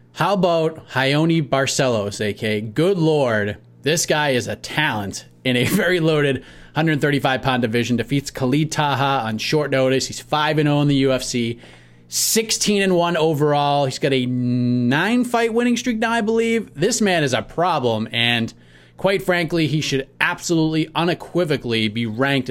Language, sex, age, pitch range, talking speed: English, male, 30-49, 125-160 Hz, 145 wpm